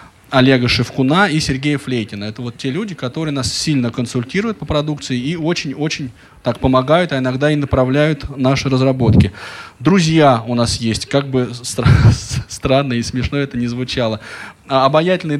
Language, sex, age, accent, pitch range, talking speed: Russian, male, 20-39, native, 125-165 Hz, 150 wpm